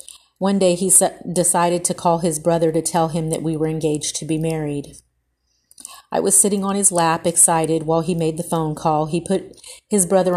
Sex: female